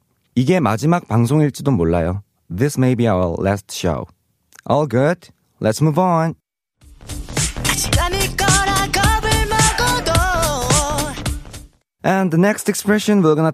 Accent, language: native, Korean